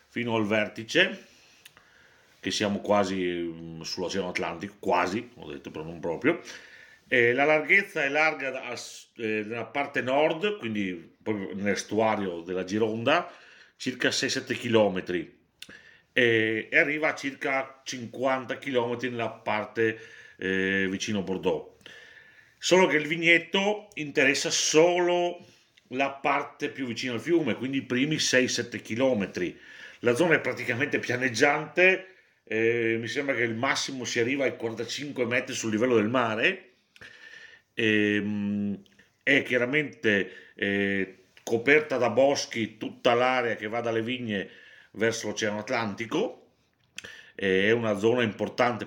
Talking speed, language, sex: 125 wpm, Italian, male